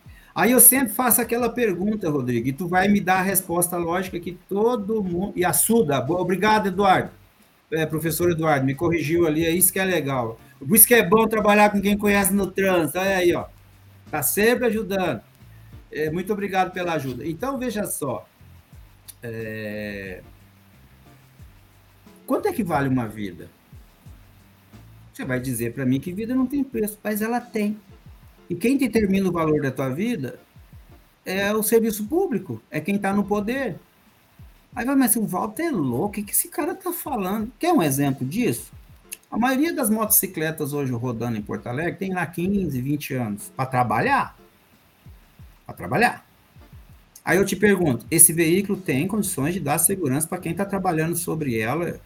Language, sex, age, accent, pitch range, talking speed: Portuguese, male, 60-79, Brazilian, 130-210 Hz, 165 wpm